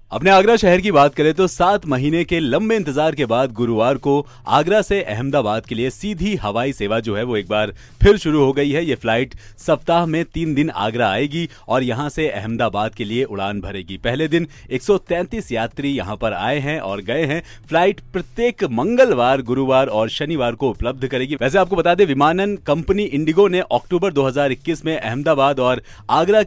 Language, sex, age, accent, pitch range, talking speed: Hindi, male, 40-59, native, 120-165 Hz, 190 wpm